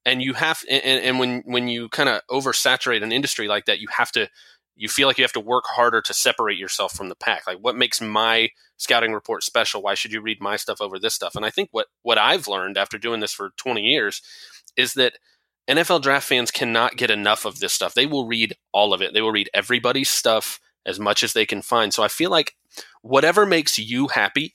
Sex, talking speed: male, 235 wpm